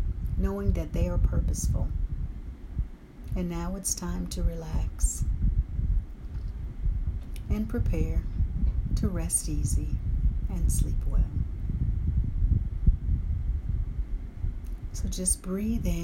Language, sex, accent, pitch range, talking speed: English, female, American, 80-90 Hz, 80 wpm